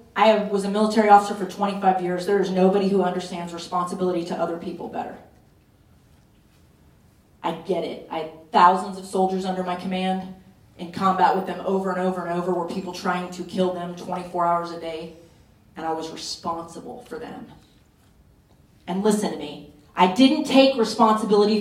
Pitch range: 185-245 Hz